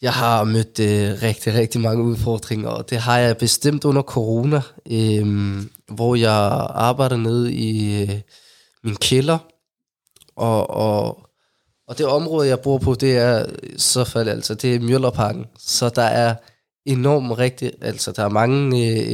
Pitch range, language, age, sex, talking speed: 115-135 Hz, Danish, 20-39, male, 155 wpm